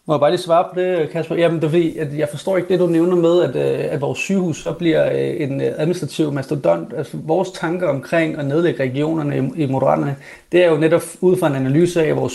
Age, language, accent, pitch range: 30-49, English, Danish, 145-175 Hz